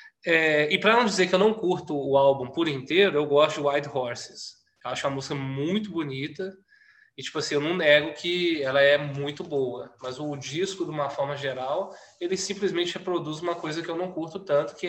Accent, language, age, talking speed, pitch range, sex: Brazilian, Portuguese, 20-39, 210 wpm, 140-185 Hz, male